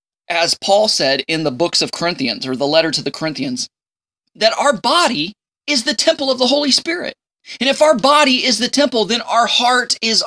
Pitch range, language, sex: 185-240 Hz, English, male